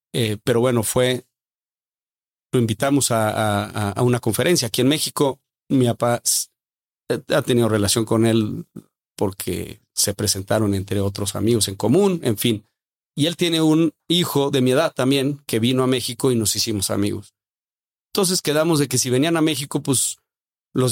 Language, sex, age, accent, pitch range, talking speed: Spanish, male, 40-59, Mexican, 110-135 Hz, 165 wpm